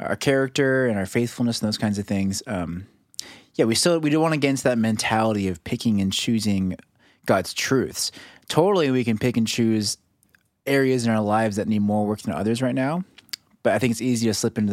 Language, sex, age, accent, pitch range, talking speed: English, male, 20-39, American, 105-125 Hz, 220 wpm